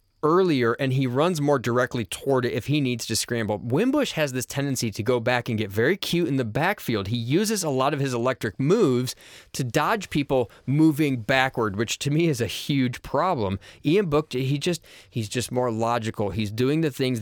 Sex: male